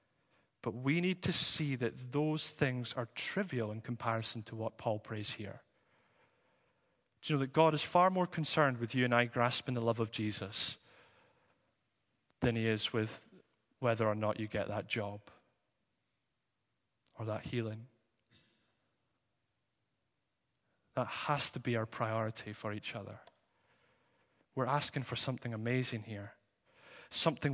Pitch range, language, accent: 115-135 Hz, English, British